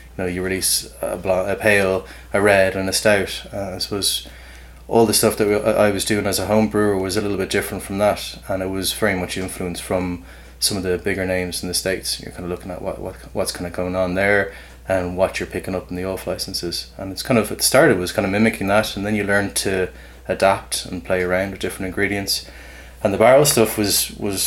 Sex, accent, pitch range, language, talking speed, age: male, Irish, 85-100 Hz, English, 250 wpm, 20-39